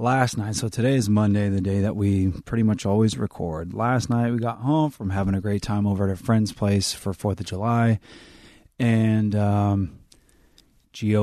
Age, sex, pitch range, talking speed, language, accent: 20-39, male, 95-110 Hz, 190 wpm, English, American